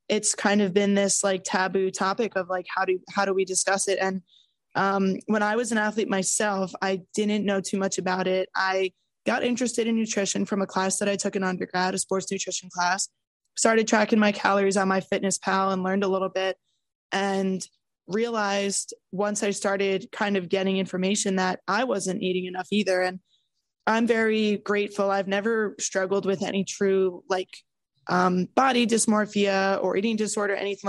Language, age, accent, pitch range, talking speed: English, 20-39, American, 190-205 Hz, 185 wpm